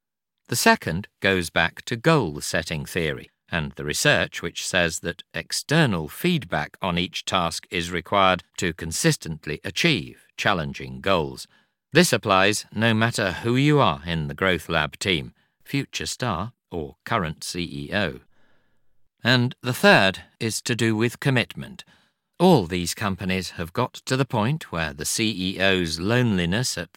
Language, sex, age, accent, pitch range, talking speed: English, male, 50-69, British, 85-120 Hz, 140 wpm